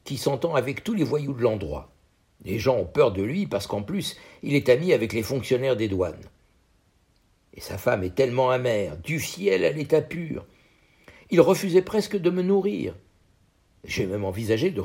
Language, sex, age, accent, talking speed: French, male, 60-79, French, 185 wpm